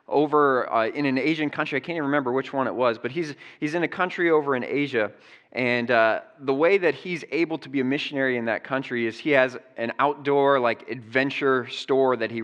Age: 20-39